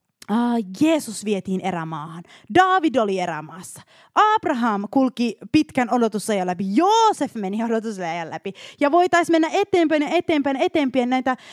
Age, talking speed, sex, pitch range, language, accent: 20-39, 130 wpm, female, 220-320 Hz, Finnish, native